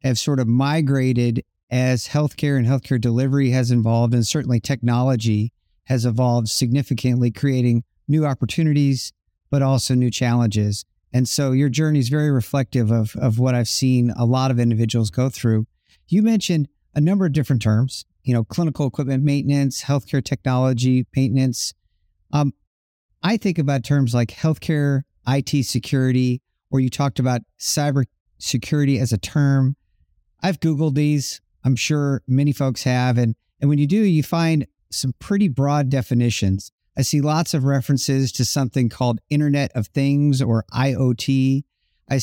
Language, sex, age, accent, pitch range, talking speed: English, male, 50-69, American, 120-145 Hz, 155 wpm